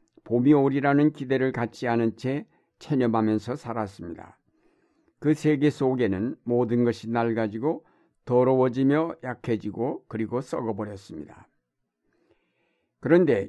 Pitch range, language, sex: 115-140 Hz, Korean, male